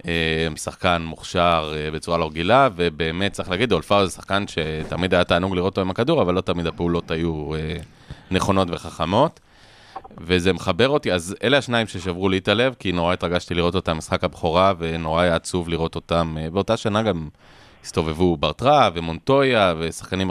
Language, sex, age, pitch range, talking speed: Hebrew, male, 30-49, 85-105 Hz, 160 wpm